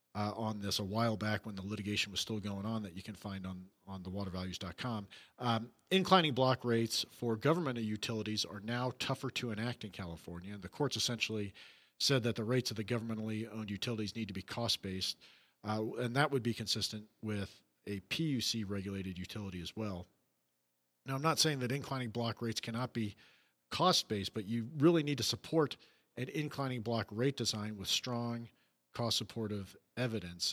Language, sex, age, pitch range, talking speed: English, male, 50-69, 105-130 Hz, 170 wpm